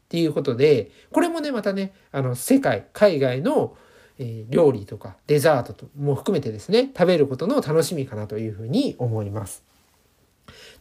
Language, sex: Japanese, male